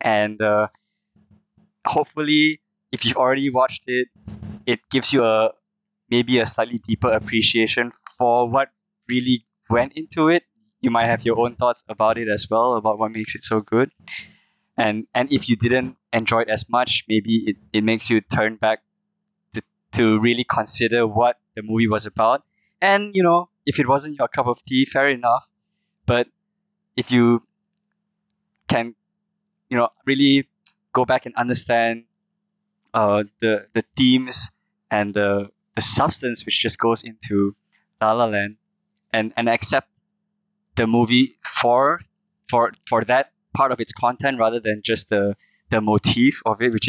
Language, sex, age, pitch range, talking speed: English, male, 20-39, 110-170 Hz, 155 wpm